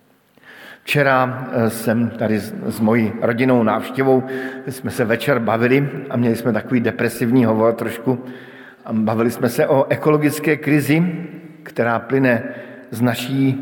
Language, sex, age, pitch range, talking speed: Slovak, male, 50-69, 115-140 Hz, 125 wpm